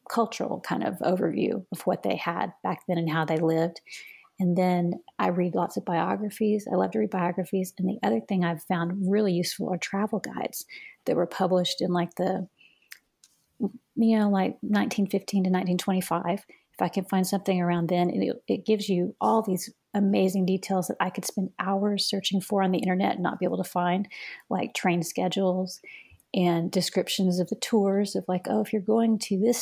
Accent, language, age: American, English, 30-49